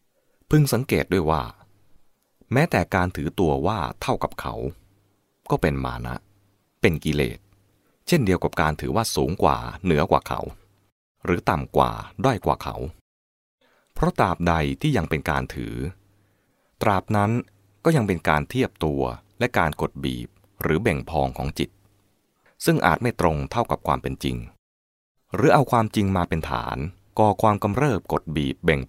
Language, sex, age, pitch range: English, male, 20-39, 70-105 Hz